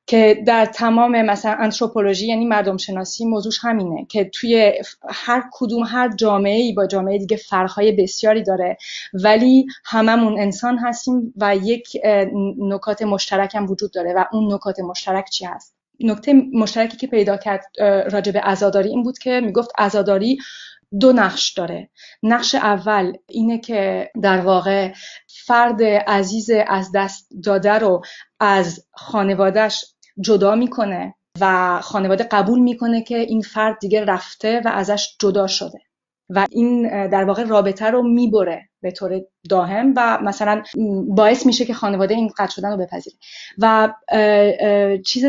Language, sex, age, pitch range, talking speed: Persian, female, 30-49, 195-235 Hz, 145 wpm